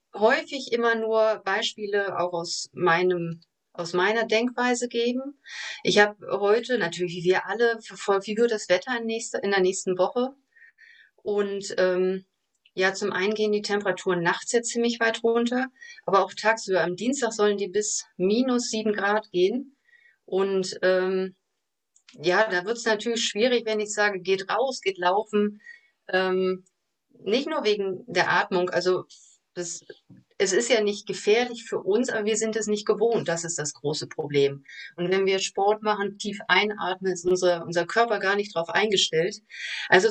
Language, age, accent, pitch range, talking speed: German, 30-49, German, 185-240 Hz, 170 wpm